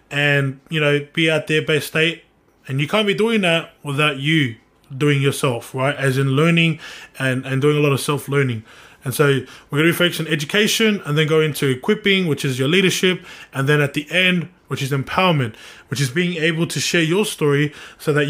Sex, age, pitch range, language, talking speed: male, 20-39, 140-170 Hz, English, 210 wpm